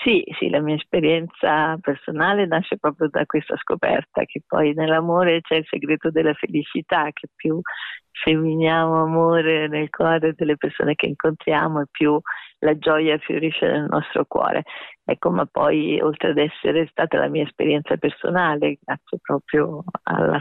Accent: native